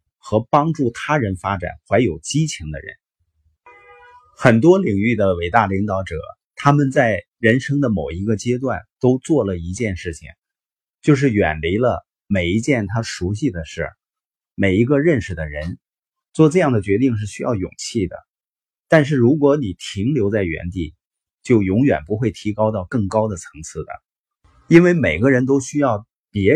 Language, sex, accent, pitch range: Chinese, male, native, 95-140 Hz